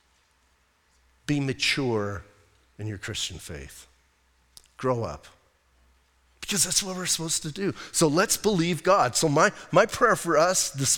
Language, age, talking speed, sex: English, 40-59, 140 wpm, male